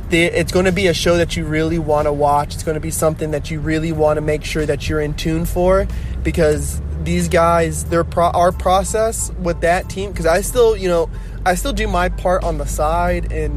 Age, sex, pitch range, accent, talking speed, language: 20-39, male, 140-170 Hz, American, 235 wpm, English